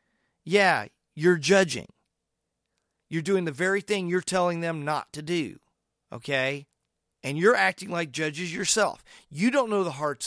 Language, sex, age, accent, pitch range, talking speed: English, male, 40-59, American, 145-185 Hz, 150 wpm